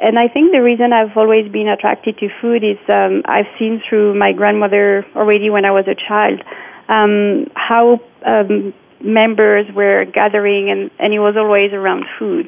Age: 30-49